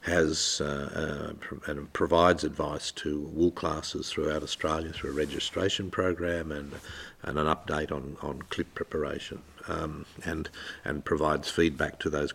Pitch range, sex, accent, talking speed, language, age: 75-85 Hz, male, Australian, 145 wpm, English, 50-69